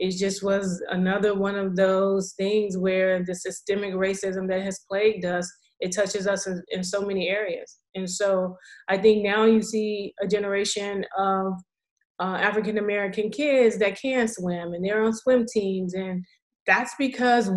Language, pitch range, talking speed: English, 185-220 Hz, 160 wpm